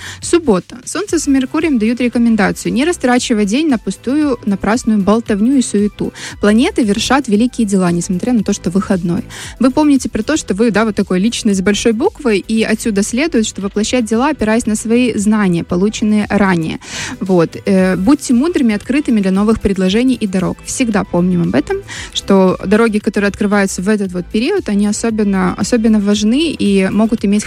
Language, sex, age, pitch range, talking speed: Russian, female, 20-39, 205-250 Hz, 170 wpm